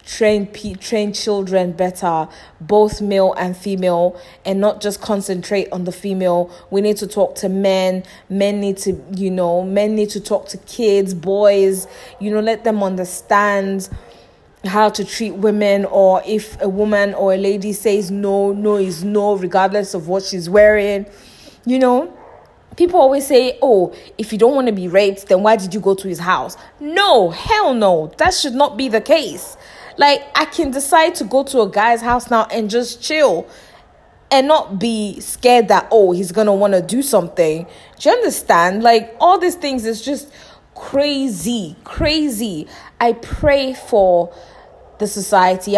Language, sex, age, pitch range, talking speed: English, female, 20-39, 190-225 Hz, 175 wpm